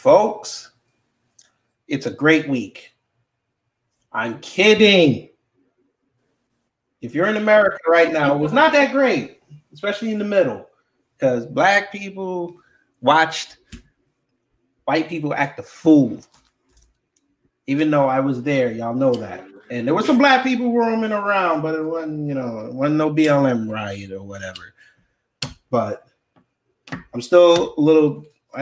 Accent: American